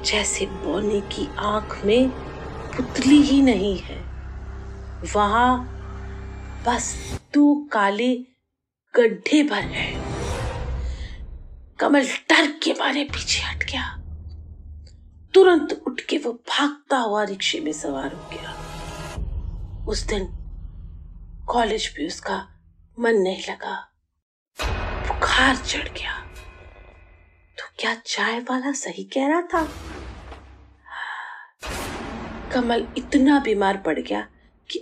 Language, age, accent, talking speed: Hindi, 30-49, native, 100 wpm